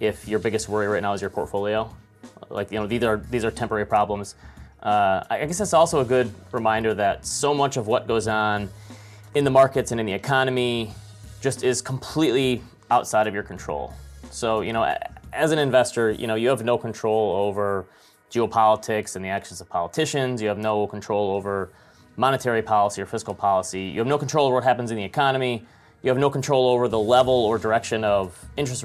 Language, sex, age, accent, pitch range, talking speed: English, male, 30-49, American, 105-125 Hz, 200 wpm